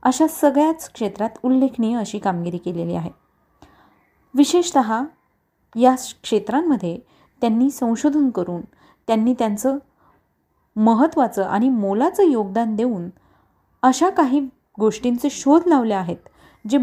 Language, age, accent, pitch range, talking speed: Marathi, 30-49, native, 210-275 Hz, 100 wpm